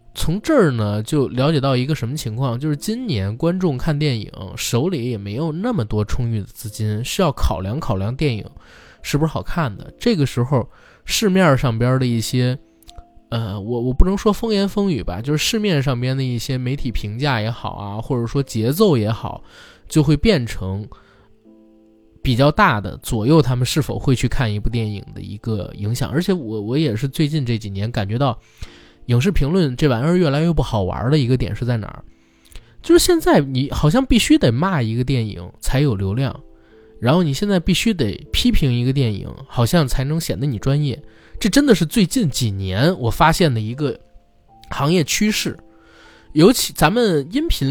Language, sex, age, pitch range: Chinese, male, 20-39, 110-155 Hz